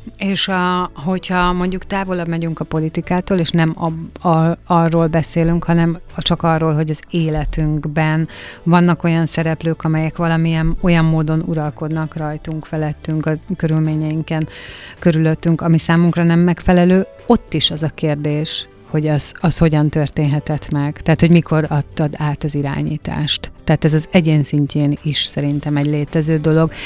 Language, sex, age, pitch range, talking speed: Hungarian, female, 30-49, 150-170 Hz, 145 wpm